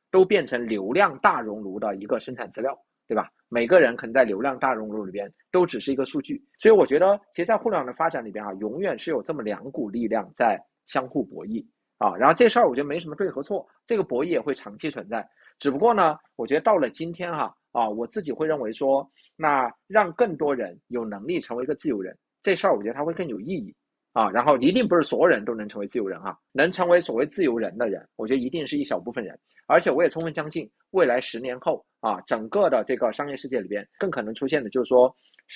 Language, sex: Chinese, male